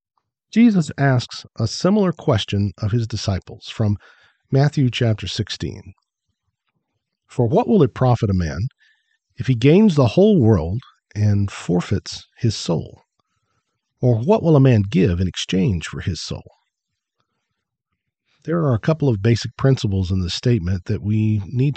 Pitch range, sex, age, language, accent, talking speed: 110-145 Hz, male, 50-69, English, American, 145 wpm